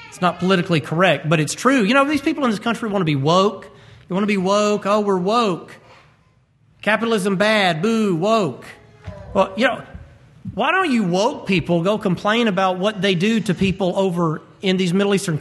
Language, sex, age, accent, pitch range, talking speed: English, male, 40-59, American, 135-220 Hz, 200 wpm